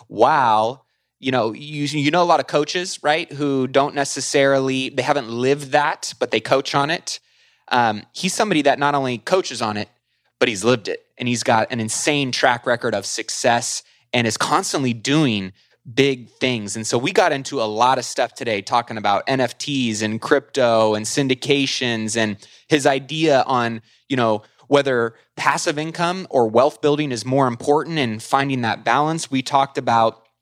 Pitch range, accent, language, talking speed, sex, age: 120-145 Hz, American, English, 180 wpm, male, 20-39